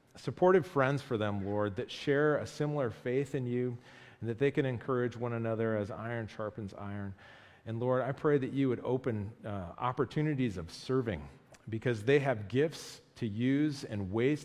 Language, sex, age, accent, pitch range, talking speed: English, male, 40-59, American, 105-135 Hz, 180 wpm